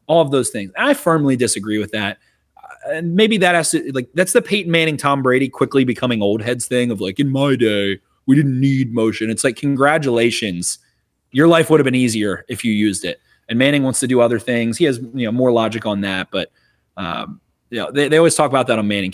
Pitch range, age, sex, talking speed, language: 115-165 Hz, 30-49, male, 240 wpm, English